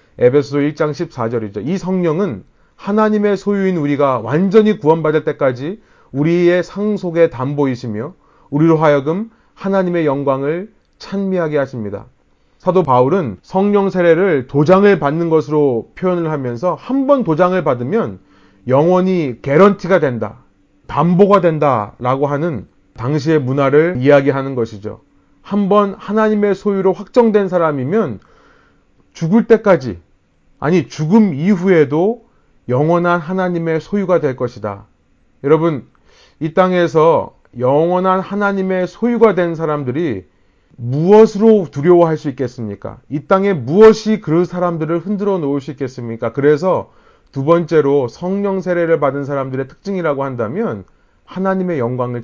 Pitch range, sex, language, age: 125-185 Hz, male, Korean, 30-49